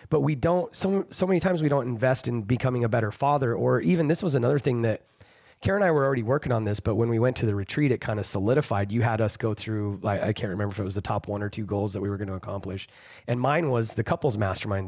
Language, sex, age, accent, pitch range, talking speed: English, male, 30-49, American, 110-145 Hz, 280 wpm